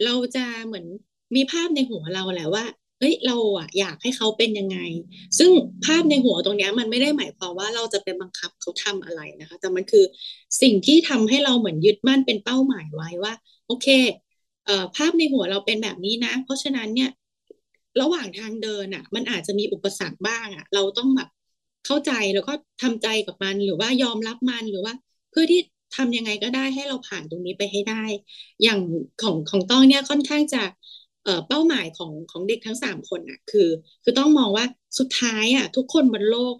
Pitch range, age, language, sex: 200-270 Hz, 20-39, Thai, female